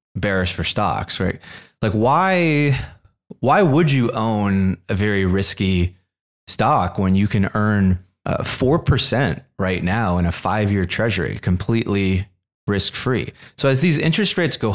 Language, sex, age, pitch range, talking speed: English, male, 30-49, 90-110 Hz, 140 wpm